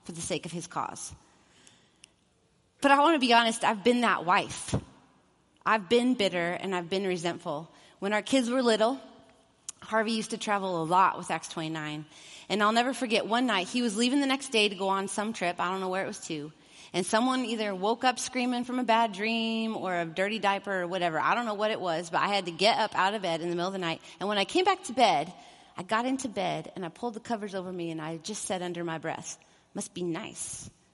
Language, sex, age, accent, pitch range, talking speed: English, female, 30-49, American, 170-225 Hz, 245 wpm